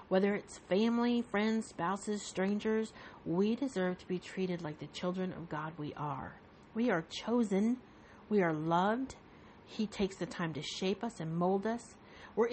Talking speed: 170 wpm